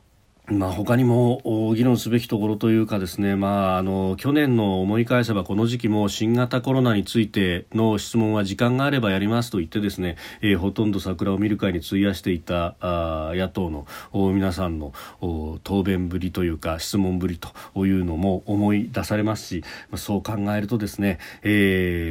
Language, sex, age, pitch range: Japanese, male, 40-59, 90-110 Hz